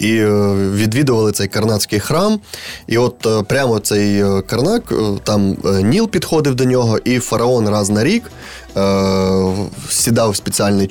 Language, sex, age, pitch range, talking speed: Ukrainian, male, 20-39, 105-125 Hz, 130 wpm